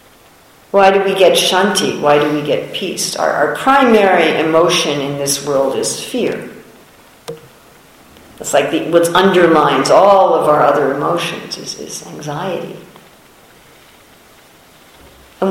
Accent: American